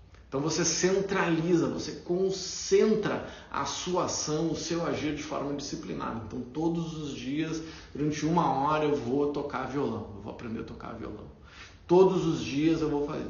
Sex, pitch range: male, 105-160 Hz